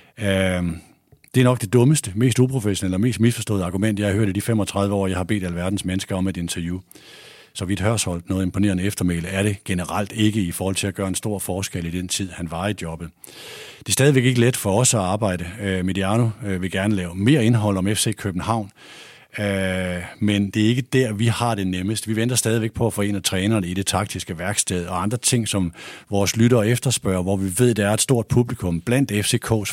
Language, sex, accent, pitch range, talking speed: Danish, male, native, 90-110 Hz, 220 wpm